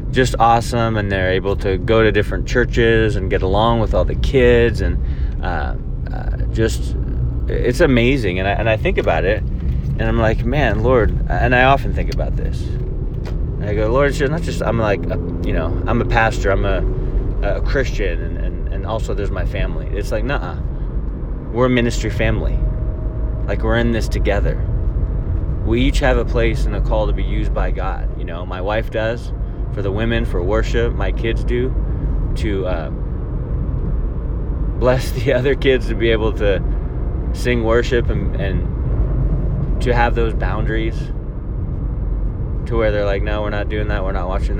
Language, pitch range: English, 95-115 Hz